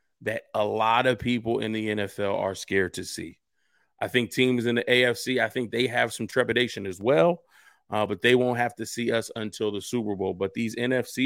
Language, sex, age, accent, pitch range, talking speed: English, male, 30-49, American, 115-140 Hz, 220 wpm